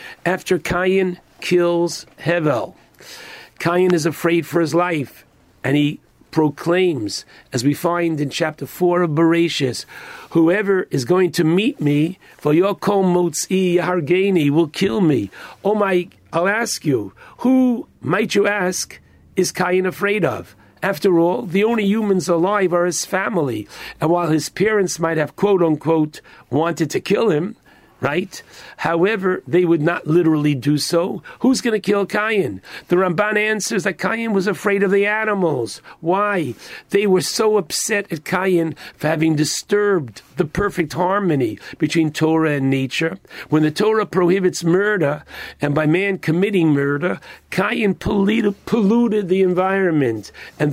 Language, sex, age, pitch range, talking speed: English, male, 50-69, 160-200 Hz, 145 wpm